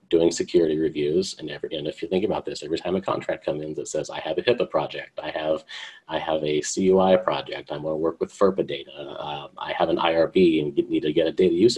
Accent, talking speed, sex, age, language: American, 260 wpm, male, 40-59, English